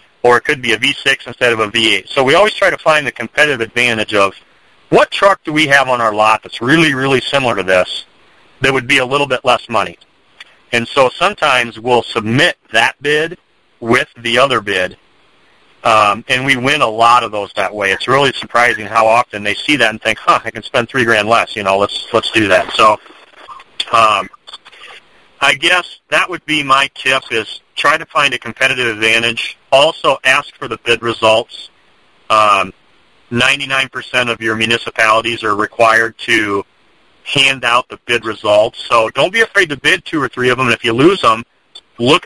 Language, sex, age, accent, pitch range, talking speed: English, male, 40-59, American, 115-145 Hz, 195 wpm